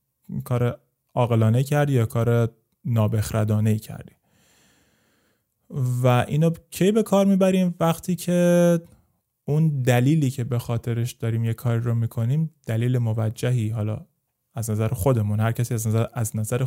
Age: 30-49